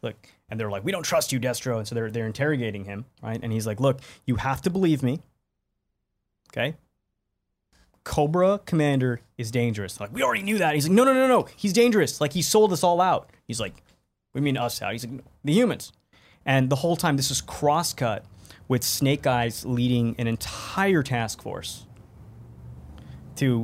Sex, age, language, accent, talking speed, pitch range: male, 20-39, English, American, 195 wpm, 110-140 Hz